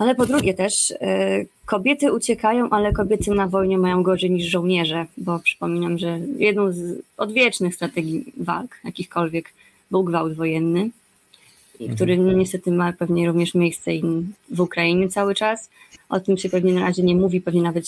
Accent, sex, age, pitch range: native, female, 20-39, 170-205 Hz